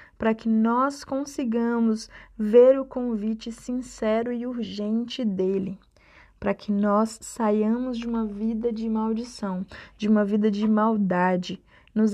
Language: Portuguese